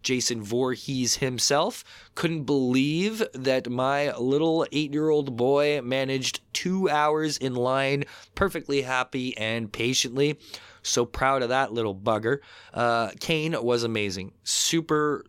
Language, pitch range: English, 110-140 Hz